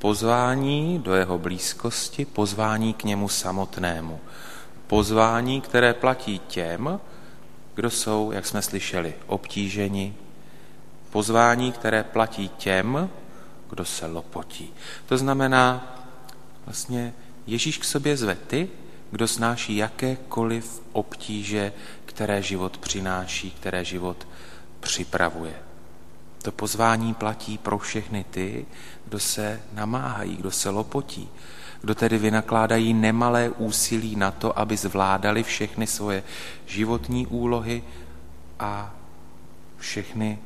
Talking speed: 105 wpm